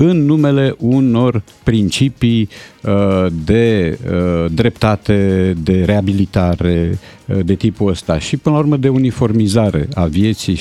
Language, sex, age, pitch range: Romanian, male, 50-69, 95-125 Hz